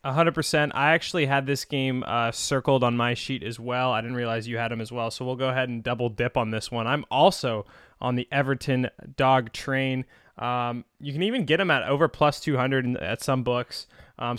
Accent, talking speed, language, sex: American, 220 wpm, English, male